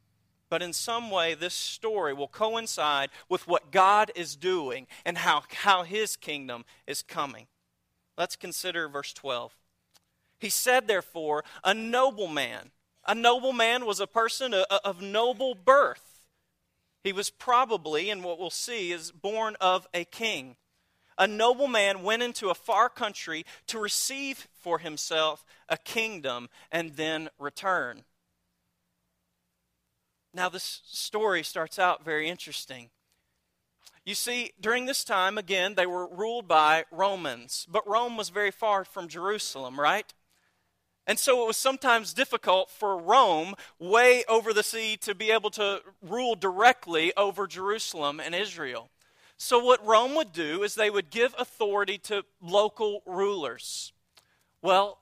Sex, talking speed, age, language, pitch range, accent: male, 140 wpm, 40-59, English, 160-225 Hz, American